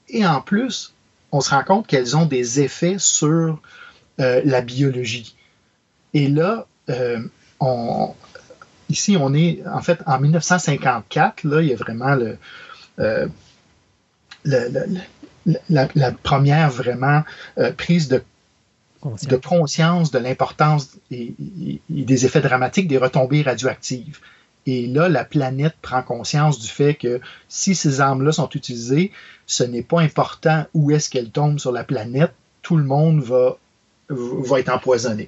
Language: French